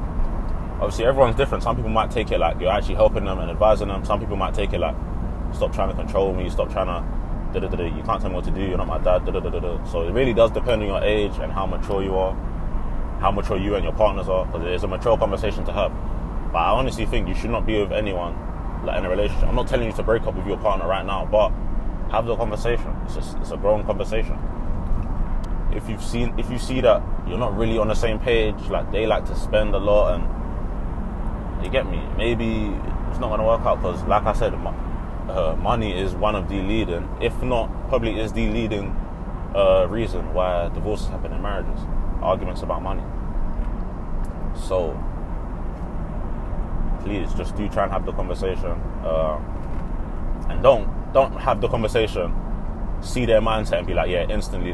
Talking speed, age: 215 wpm, 20-39